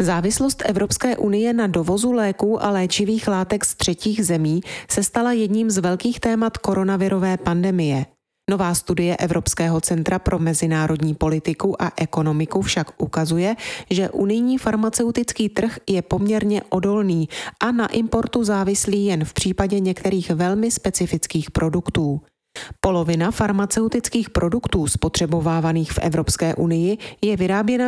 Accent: native